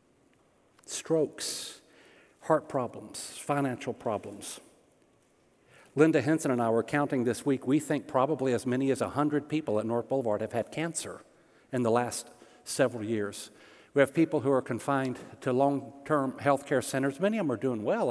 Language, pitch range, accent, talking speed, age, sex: English, 125-155 Hz, American, 160 wpm, 50-69, male